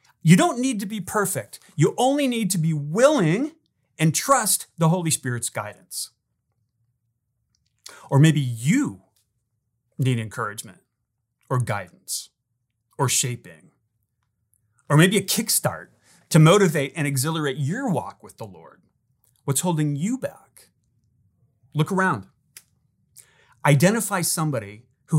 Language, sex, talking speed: English, male, 115 wpm